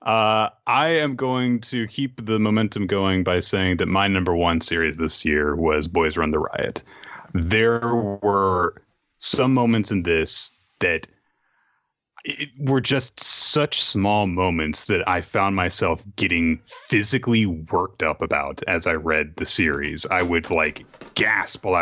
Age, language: 30-49, English